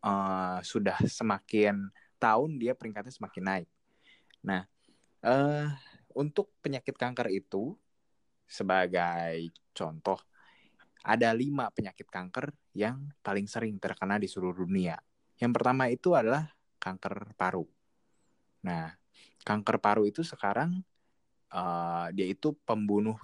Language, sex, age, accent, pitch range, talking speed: Indonesian, male, 20-39, native, 90-120 Hz, 110 wpm